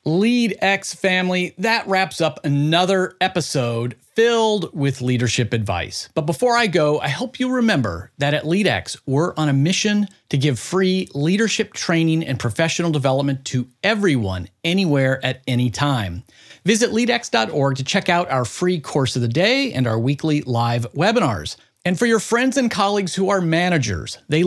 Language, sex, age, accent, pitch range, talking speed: English, male, 40-59, American, 125-190 Hz, 160 wpm